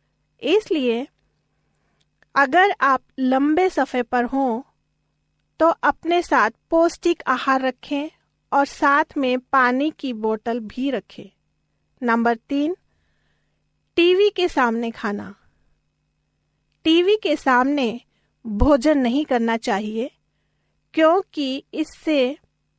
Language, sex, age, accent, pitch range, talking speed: Hindi, female, 40-59, native, 245-310 Hz, 95 wpm